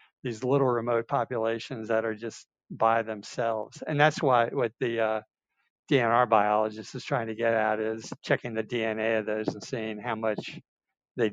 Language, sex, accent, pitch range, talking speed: English, male, American, 110-125 Hz, 175 wpm